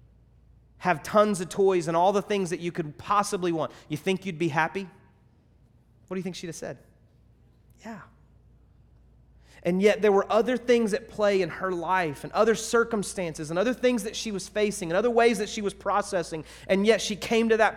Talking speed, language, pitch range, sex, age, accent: 205 wpm, English, 175-225 Hz, male, 30-49, American